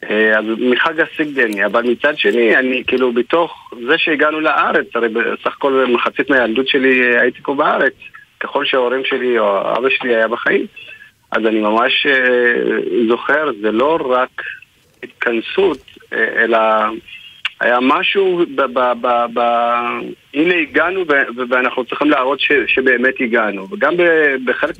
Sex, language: male, Hebrew